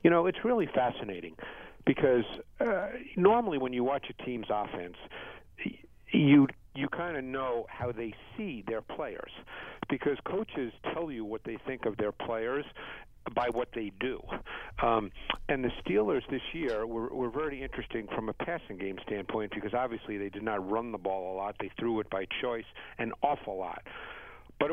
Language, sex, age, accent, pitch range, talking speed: English, male, 50-69, American, 110-135 Hz, 175 wpm